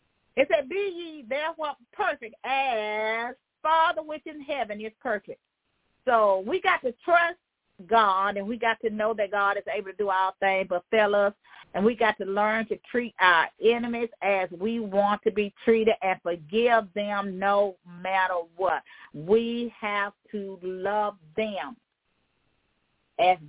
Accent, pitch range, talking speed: American, 190-235 Hz, 155 wpm